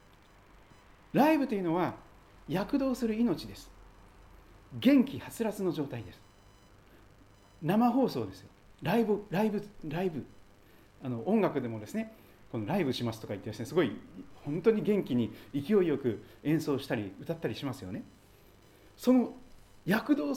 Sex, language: male, Japanese